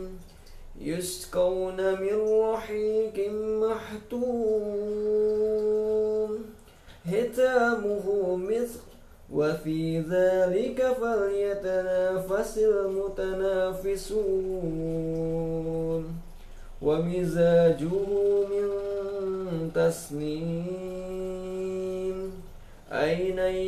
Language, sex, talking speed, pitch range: Indonesian, male, 35 wpm, 185-245 Hz